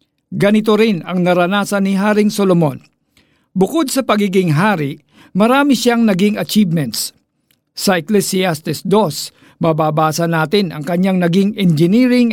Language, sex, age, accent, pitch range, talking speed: Filipino, male, 50-69, native, 165-215 Hz, 115 wpm